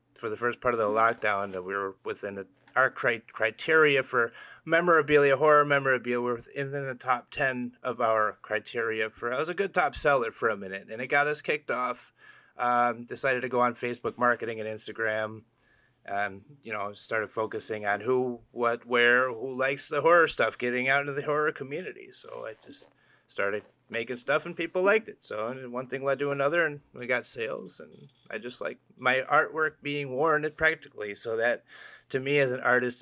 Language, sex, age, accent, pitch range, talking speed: English, male, 30-49, American, 110-140 Hz, 200 wpm